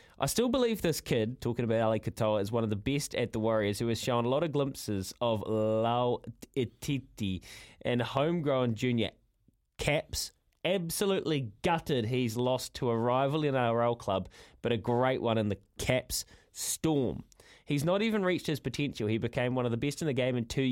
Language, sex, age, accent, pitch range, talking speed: English, male, 20-39, Australian, 115-145 Hz, 195 wpm